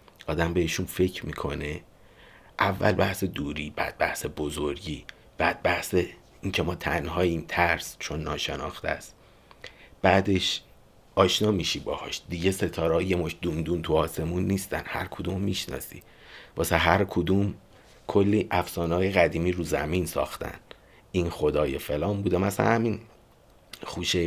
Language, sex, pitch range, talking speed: Persian, male, 85-100 Hz, 125 wpm